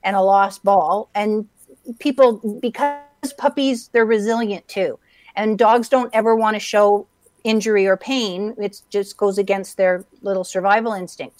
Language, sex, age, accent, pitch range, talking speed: English, female, 50-69, American, 205-235 Hz, 155 wpm